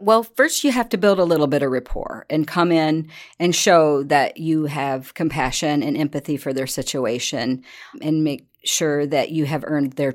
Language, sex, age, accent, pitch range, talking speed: English, female, 40-59, American, 145-175 Hz, 195 wpm